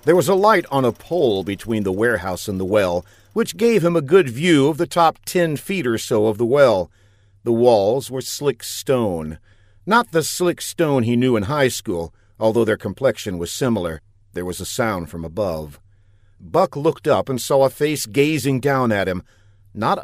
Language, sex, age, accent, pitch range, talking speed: English, male, 50-69, American, 100-155 Hz, 200 wpm